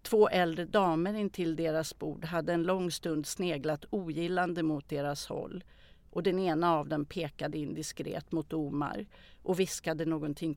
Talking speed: 155 wpm